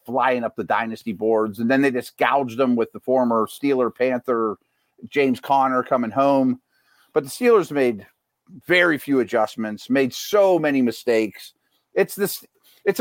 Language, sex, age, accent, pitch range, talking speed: English, male, 50-69, American, 120-145 Hz, 155 wpm